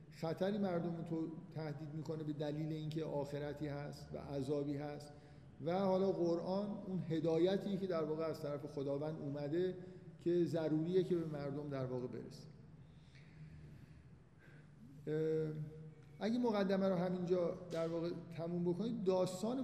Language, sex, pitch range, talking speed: Persian, male, 145-180 Hz, 130 wpm